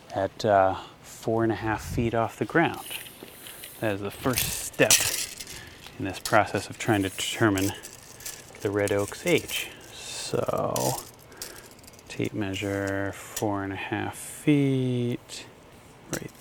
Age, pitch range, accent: 30-49, 105-140 Hz, American